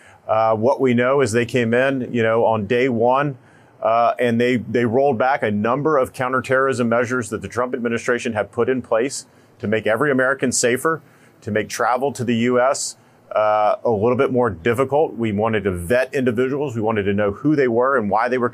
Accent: American